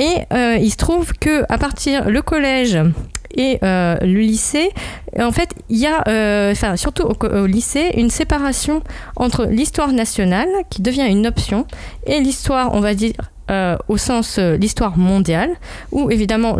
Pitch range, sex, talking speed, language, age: 180-245 Hz, female, 165 wpm, French, 30-49